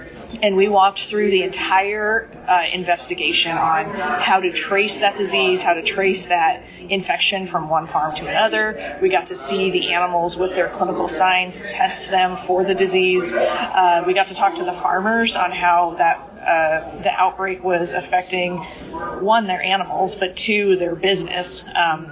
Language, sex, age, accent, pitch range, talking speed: English, female, 20-39, American, 165-195 Hz, 170 wpm